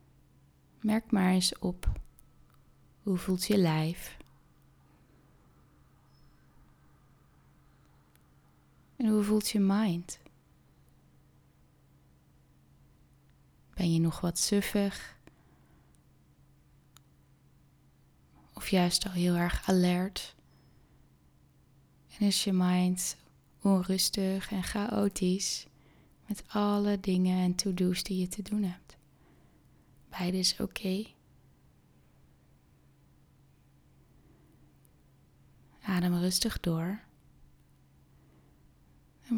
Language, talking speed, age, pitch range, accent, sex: Dutch, 75 wpm, 20-39, 170-200 Hz, Dutch, female